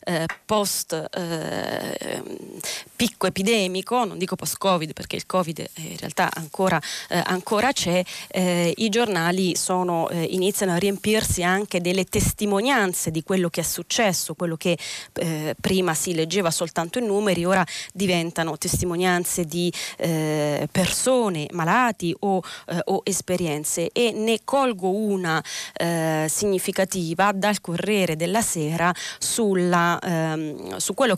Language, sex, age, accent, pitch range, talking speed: Italian, female, 20-39, native, 165-195 Hz, 125 wpm